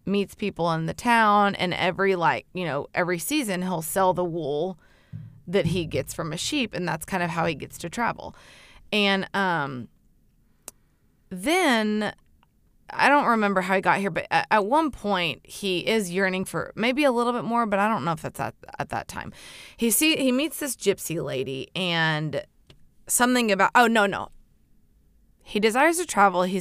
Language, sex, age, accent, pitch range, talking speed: English, female, 20-39, American, 160-200 Hz, 185 wpm